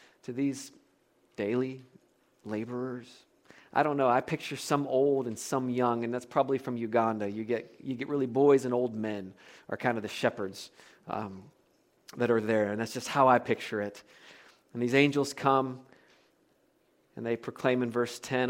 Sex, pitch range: male, 125-215 Hz